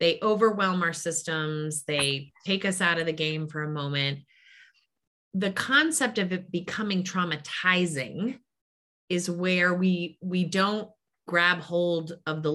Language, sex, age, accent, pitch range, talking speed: English, female, 30-49, American, 160-210 Hz, 140 wpm